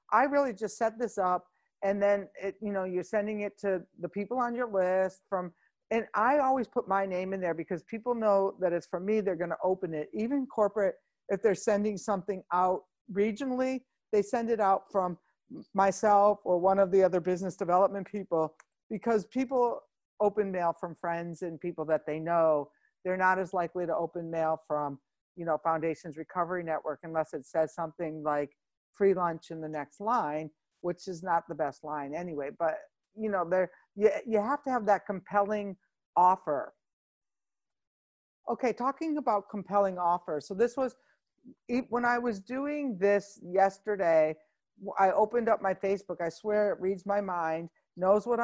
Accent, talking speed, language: American, 180 wpm, English